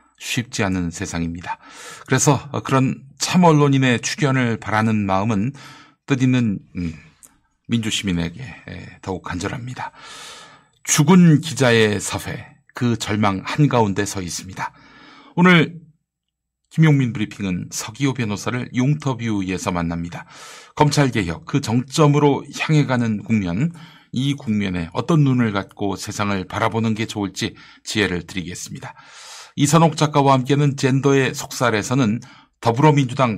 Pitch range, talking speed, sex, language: 100-140 Hz, 95 wpm, male, English